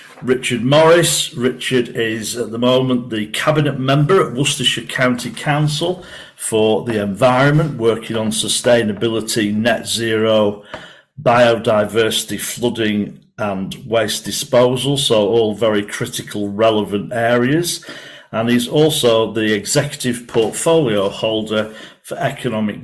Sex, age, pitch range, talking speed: male, 50-69, 110-135 Hz, 110 wpm